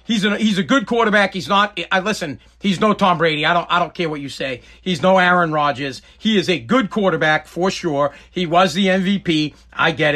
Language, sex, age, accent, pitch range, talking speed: English, male, 40-59, American, 165-210 Hz, 230 wpm